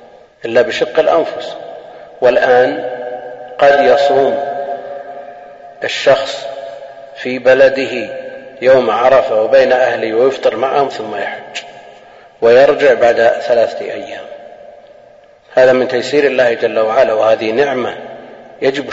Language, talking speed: Arabic, 95 wpm